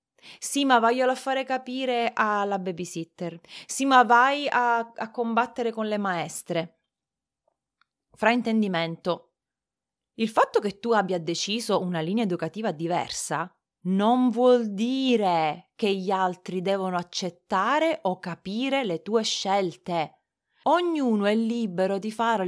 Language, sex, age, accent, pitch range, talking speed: Italian, female, 30-49, native, 185-245 Hz, 125 wpm